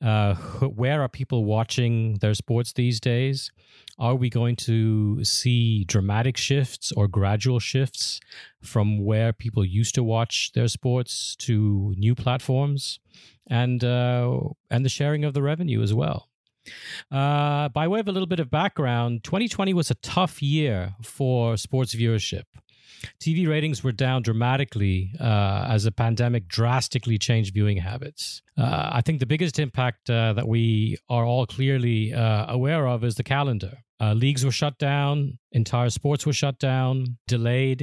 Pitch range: 115-135 Hz